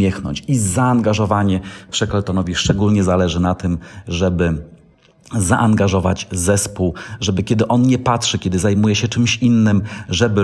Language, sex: Polish, male